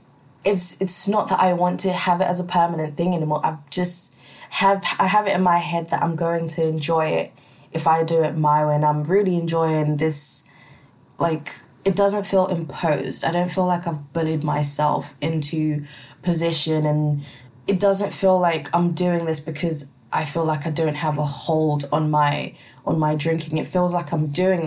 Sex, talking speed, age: female, 195 wpm, 20-39